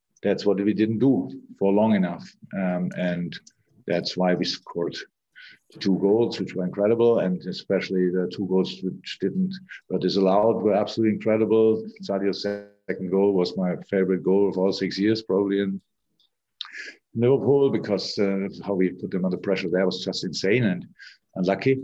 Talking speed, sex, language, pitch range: 160 wpm, male, English, 90-110 Hz